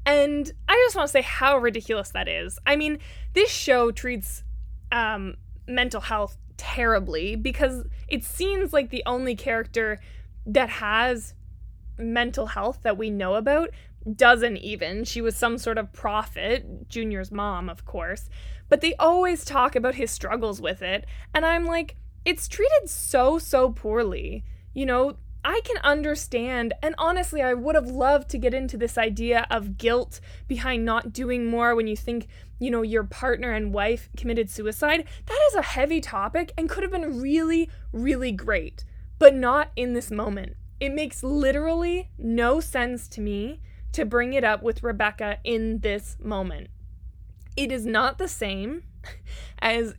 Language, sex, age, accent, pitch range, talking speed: English, female, 20-39, American, 220-280 Hz, 160 wpm